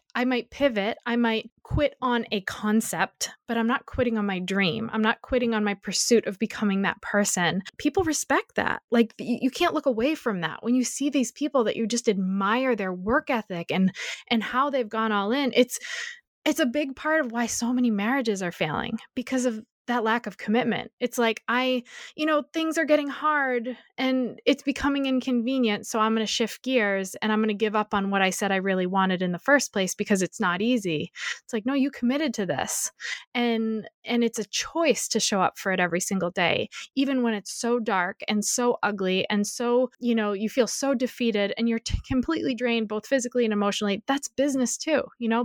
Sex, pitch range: female, 200-255 Hz